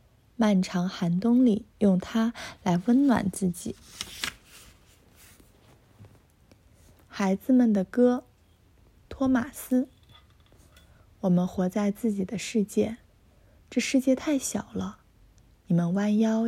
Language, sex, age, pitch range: Chinese, female, 20-39, 175-235 Hz